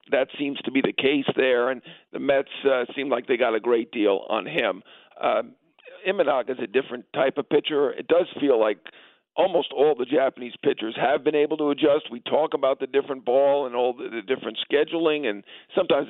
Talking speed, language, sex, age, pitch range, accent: 210 wpm, English, male, 50-69, 125-165 Hz, American